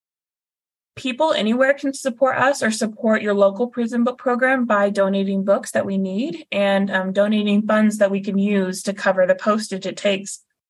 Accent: American